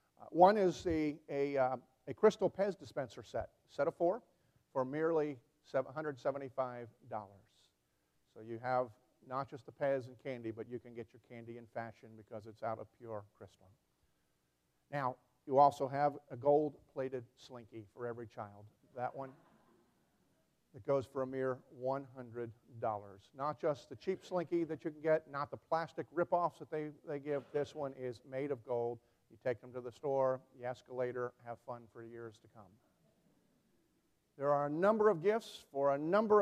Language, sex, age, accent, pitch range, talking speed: English, male, 50-69, American, 115-145 Hz, 170 wpm